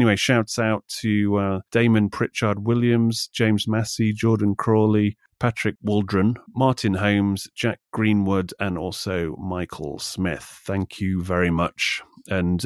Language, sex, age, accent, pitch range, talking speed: English, male, 30-49, British, 90-110 Hz, 125 wpm